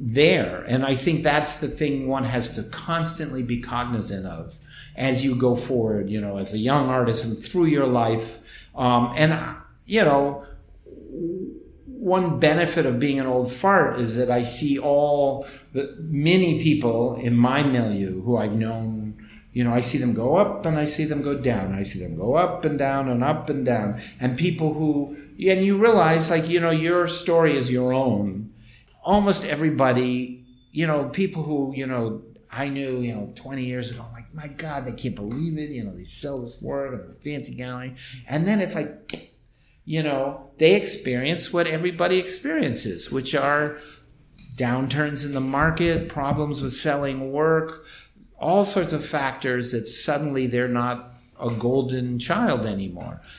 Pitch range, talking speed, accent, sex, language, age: 120-155 Hz, 175 wpm, American, male, English, 50-69